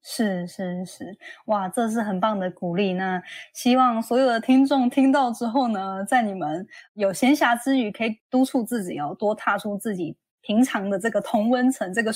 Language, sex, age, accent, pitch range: Chinese, female, 20-39, native, 200-255 Hz